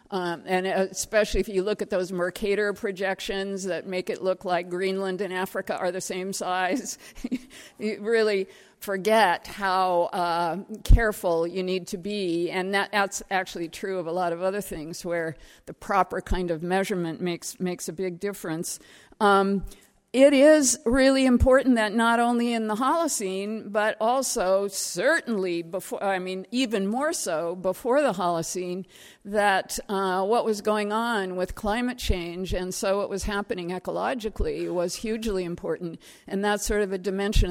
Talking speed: 160 wpm